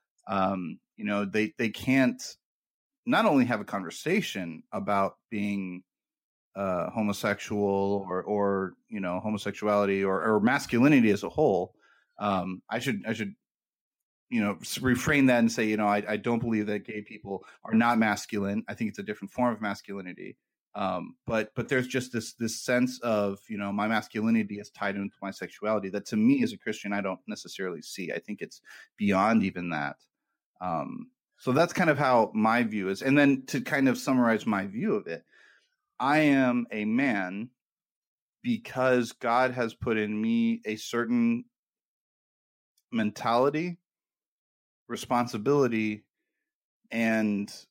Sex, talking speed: male, 155 wpm